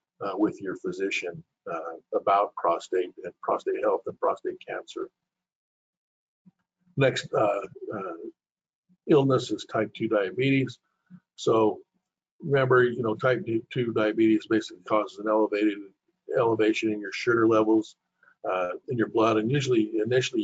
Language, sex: English, male